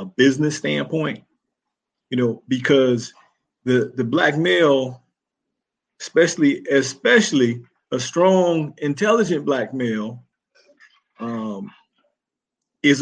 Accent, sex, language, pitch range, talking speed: American, male, English, 135-185 Hz, 90 wpm